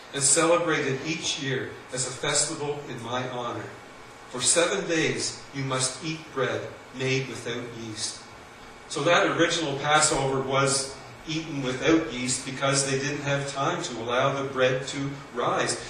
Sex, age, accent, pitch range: male, 40-59, American, 130-155 Hz